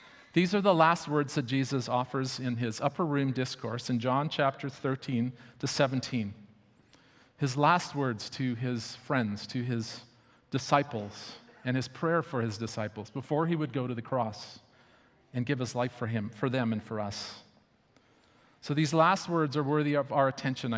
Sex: male